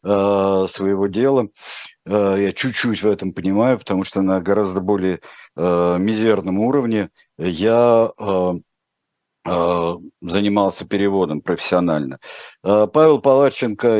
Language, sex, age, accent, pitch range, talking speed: Russian, male, 50-69, native, 95-115 Hz, 85 wpm